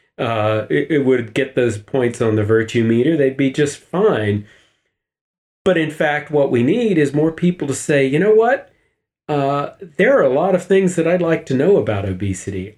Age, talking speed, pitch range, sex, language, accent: 40-59, 200 wpm, 105-135 Hz, male, English, American